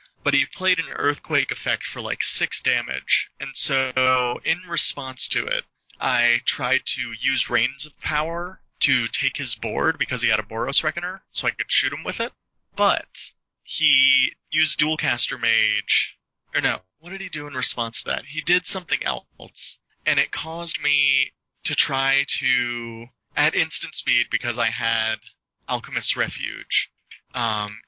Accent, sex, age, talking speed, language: American, male, 20-39, 160 wpm, English